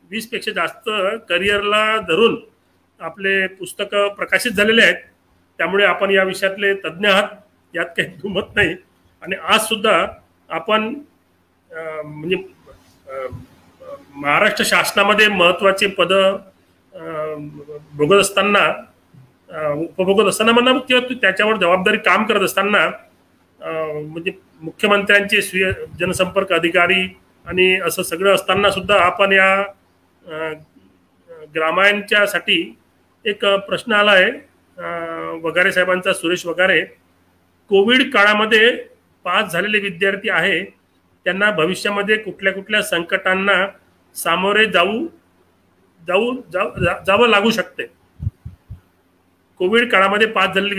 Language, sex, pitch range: Marathi, male, 160-205 Hz